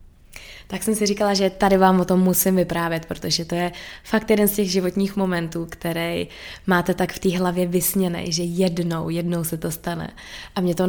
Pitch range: 165-190 Hz